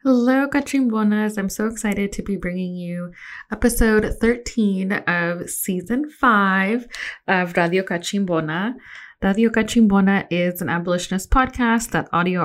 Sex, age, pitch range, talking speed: female, 20-39, 175-215 Hz, 120 wpm